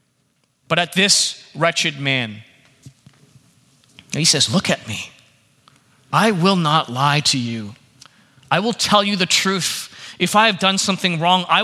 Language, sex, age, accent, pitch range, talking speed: English, male, 30-49, American, 135-190 Hz, 150 wpm